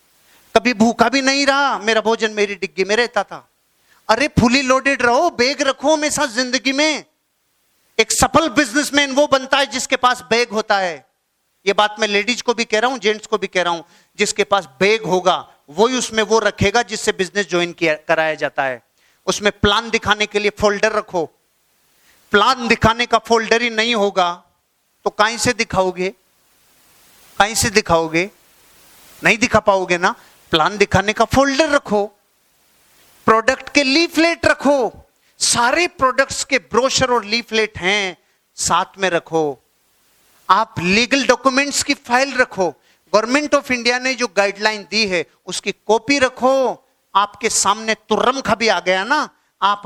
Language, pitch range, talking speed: Hindi, 195-250 Hz, 130 wpm